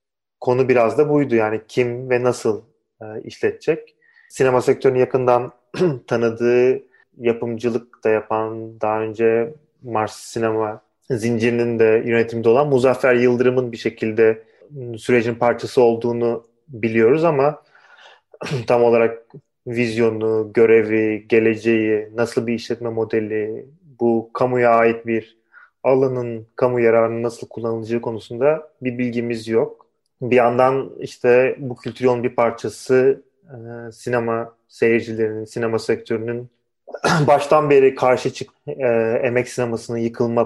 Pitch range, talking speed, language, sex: 115-125 Hz, 110 wpm, Turkish, male